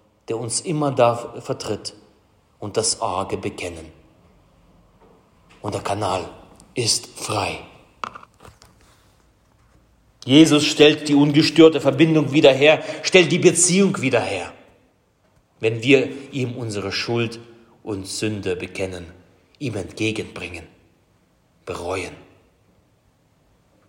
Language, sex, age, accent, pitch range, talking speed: German, male, 30-49, German, 100-140 Hz, 95 wpm